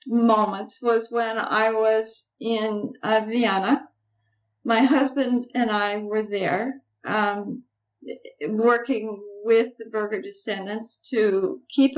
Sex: female